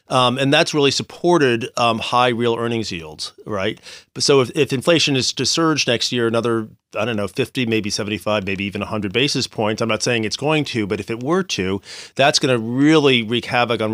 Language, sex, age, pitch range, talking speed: English, male, 40-59, 105-130 Hz, 220 wpm